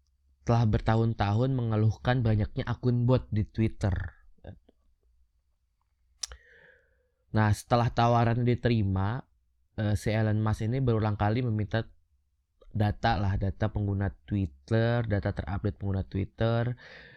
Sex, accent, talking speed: male, native, 105 wpm